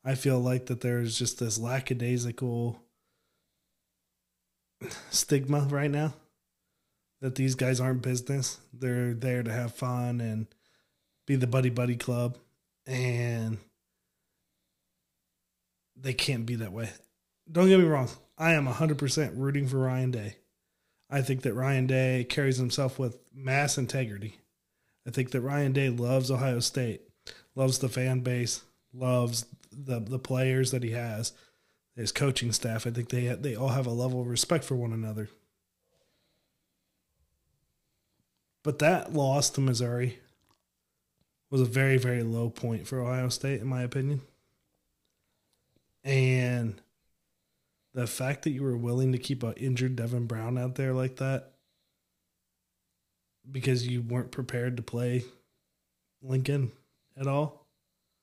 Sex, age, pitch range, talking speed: male, 20-39, 120-135 Hz, 135 wpm